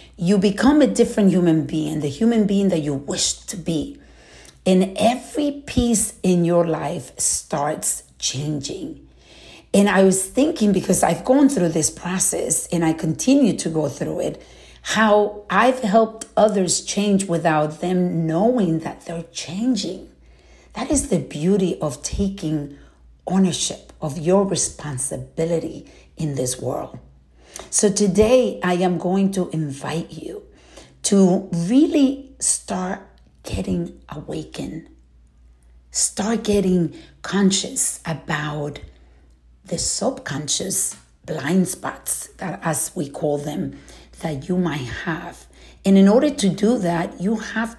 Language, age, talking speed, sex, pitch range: English, 60-79, 125 wpm, female, 145-210 Hz